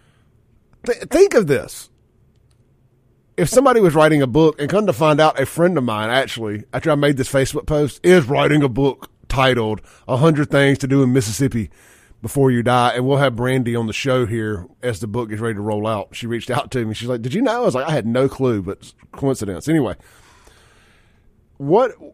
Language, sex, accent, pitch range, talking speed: English, male, American, 115-160 Hz, 210 wpm